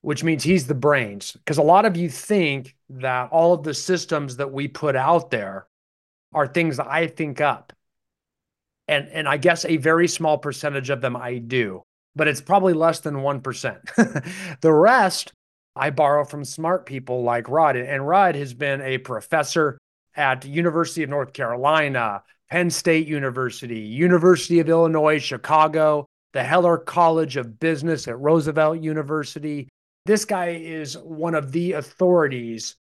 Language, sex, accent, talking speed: English, male, American, 160 wpm